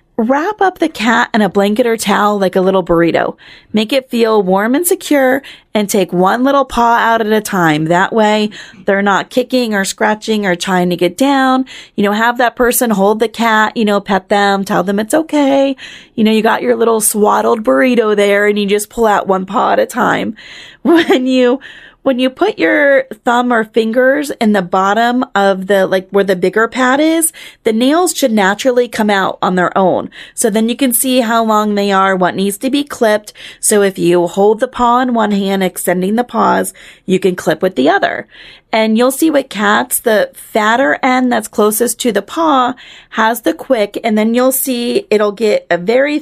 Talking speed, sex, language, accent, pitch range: 210 wpm, female, English, American, 195-250 Hz